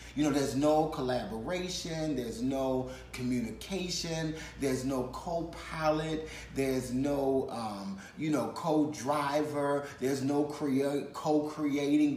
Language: English